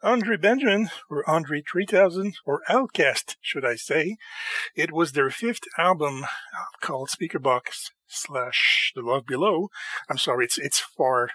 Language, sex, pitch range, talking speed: English, male, 140-205 Hz, 140 wpm